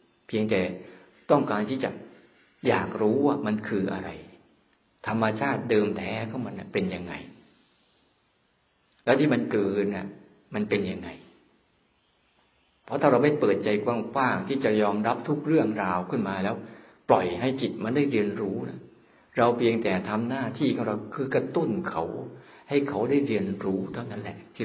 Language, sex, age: Thai, male, 60-79